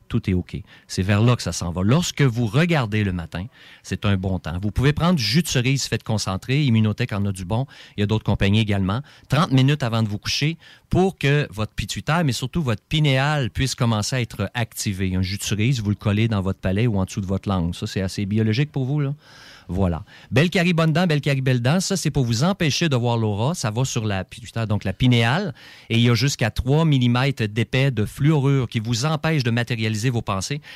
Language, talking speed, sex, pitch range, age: French, 235 wpm, male, 105-135 Hz, 40-59